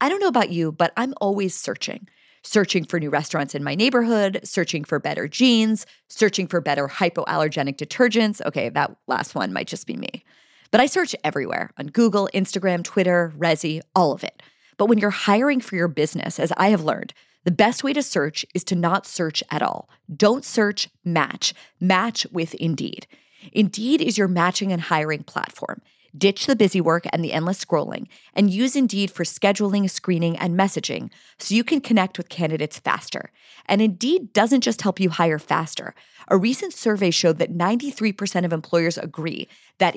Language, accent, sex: English, American, female